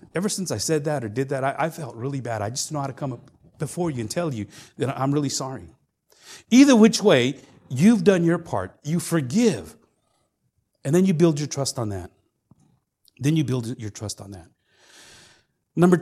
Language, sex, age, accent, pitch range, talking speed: English, male, 40-59, American, 110-165 Hz, 205 wpm